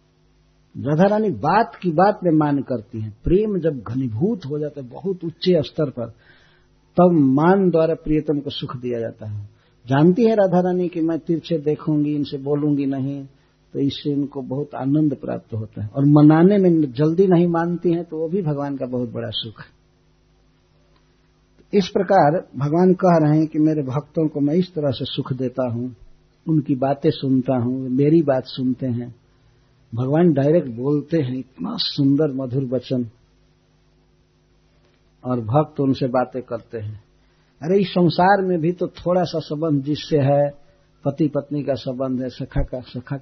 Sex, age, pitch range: male, 60-79, 125-160 Hz